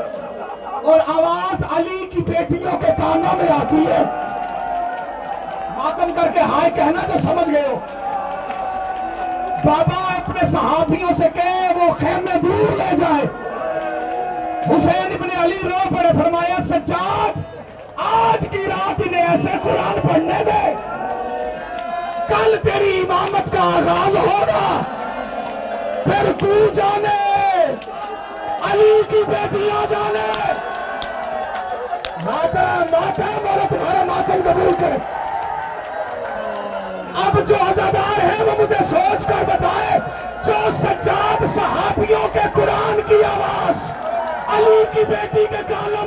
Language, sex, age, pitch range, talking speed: Urdu, male, 40-59, 340-405 Hz, 105 wpm